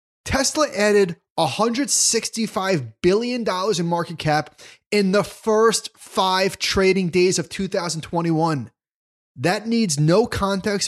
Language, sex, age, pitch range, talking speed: English, male, 30-49, 150-210 Hz, 105 wpm